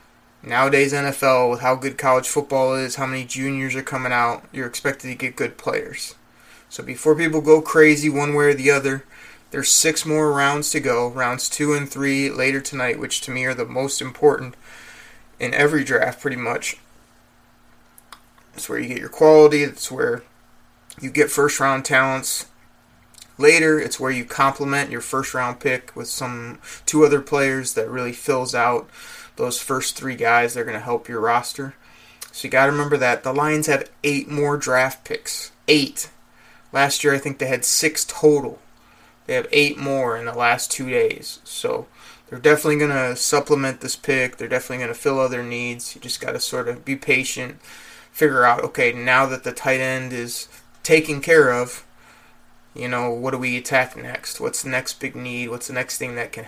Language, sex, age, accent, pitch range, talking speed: English, male, 20-39, American, 125-145 Hz, 190 wpm